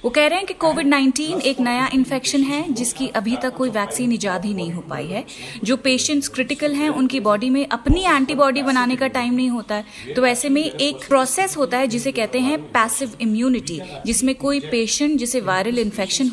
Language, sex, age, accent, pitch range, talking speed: Hindi, female, 30-49, native, 225-280 Hz, 200 wpm